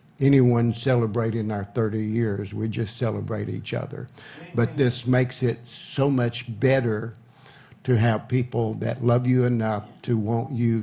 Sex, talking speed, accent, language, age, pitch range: male, 150 wpm, American, English, 60-79, 115-130 Hz